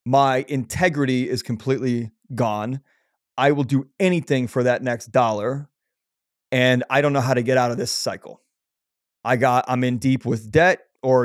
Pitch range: 120-140 Hz